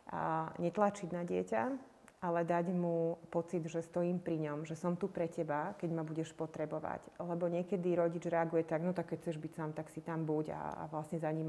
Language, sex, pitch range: Slovak, female, 160-175 Hz